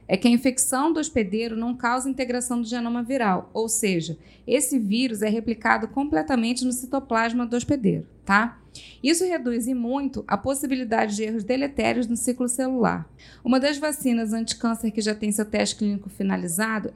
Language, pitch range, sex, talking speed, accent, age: Portuguese, 215-255 Hz, female, 165 wpm, Brazilian, 20-39